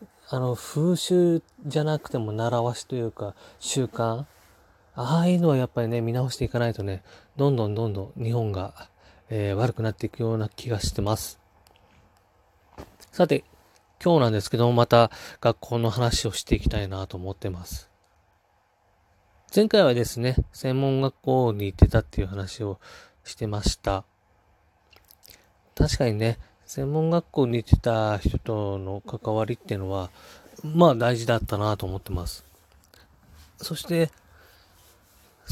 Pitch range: 95-125 Hz